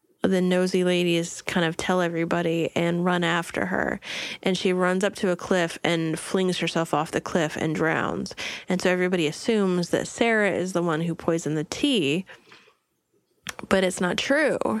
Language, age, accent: English, 20-39, American